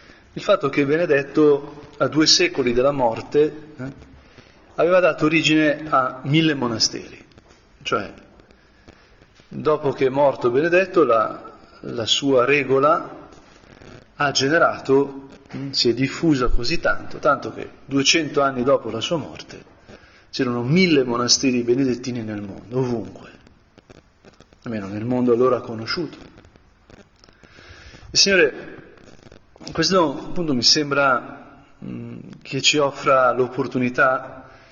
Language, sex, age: Italian, male, 40-59